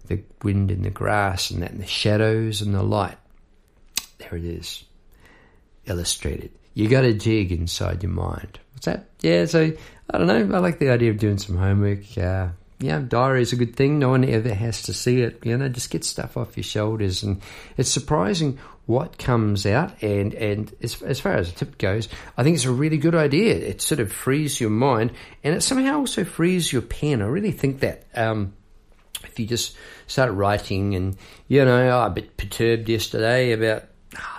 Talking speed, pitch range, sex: 200 wpm, 95-125 Hz, male